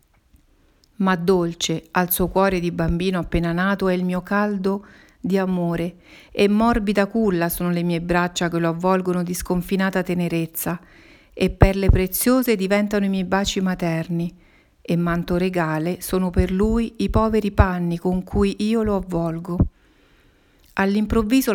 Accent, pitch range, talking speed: native, 175-200 Hz, 140 wpm